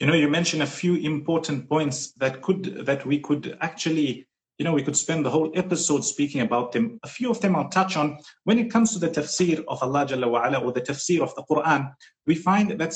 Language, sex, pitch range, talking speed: English, male, 145-185 Hz, 230 wpm